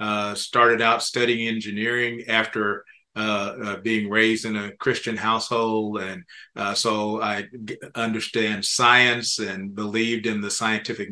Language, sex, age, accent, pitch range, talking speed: English, male, 40-59, American, 105-120 Hz, 140 wpm